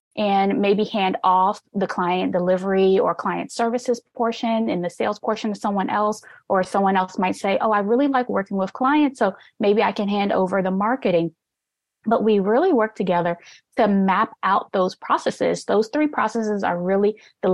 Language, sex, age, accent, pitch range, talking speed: English, female, 20-39, American, 190-225 Hz, 185 wpm